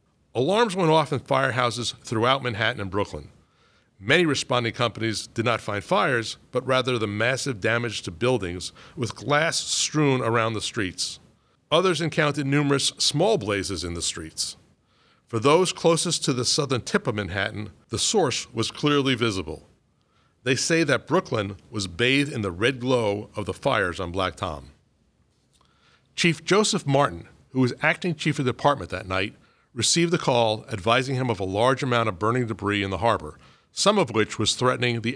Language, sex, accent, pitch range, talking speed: English, male, American, 105-145 Hz, 170 wpm